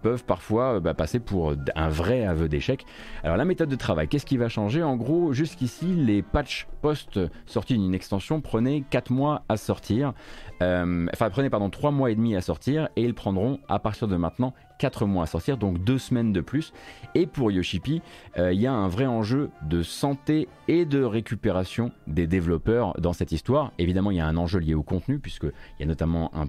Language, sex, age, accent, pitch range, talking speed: French, male, 30-49, French, 85-115 Hz, 210 wpm